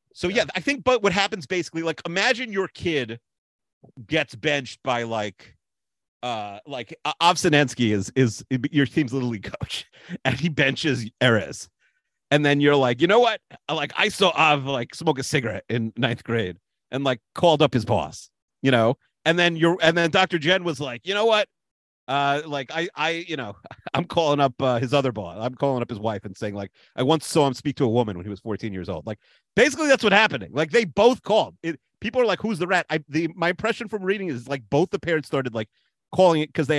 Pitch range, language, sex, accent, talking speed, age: 125-170 Hz, English, male, American, 225 wpm, 40-59